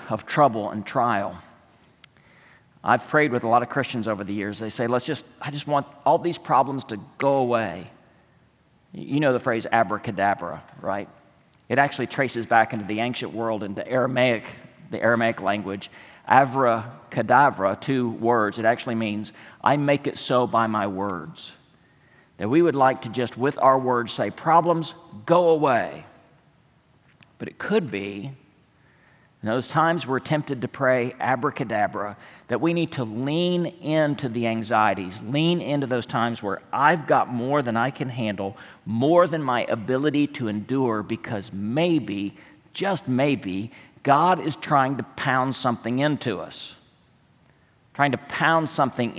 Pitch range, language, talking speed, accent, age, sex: 110-145 Hz, English, 150 wpm, American, 40-59, male